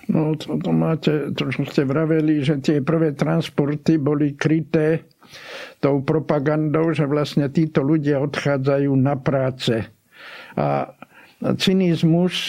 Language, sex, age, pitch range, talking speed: Slovak, male, 60-79, 130-155 Hz, 110 wpm